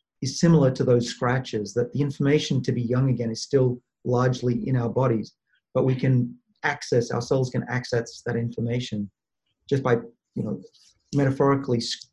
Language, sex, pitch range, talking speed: English, male, 115-135 Hz, 160 wpm